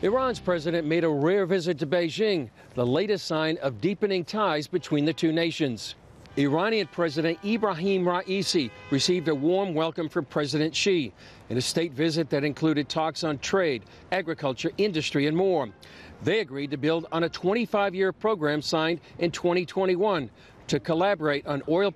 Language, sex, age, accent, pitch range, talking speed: English, male, 50-69, American, 150-190 Hz, 155 wpm